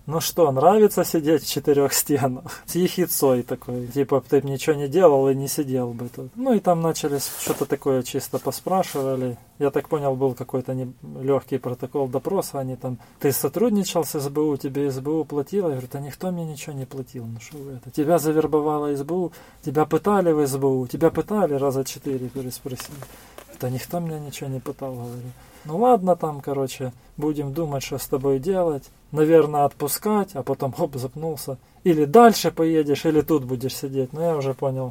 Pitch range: 130-155 Hz